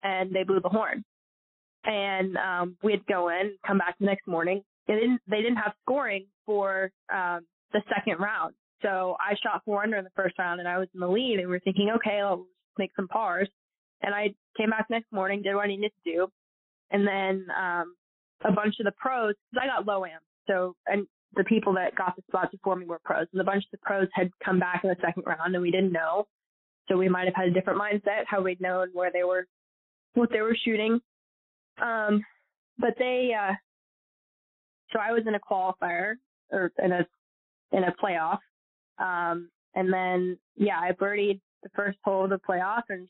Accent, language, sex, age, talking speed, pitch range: American, English, female, 20-39, 215 wpm, 185-210 Hz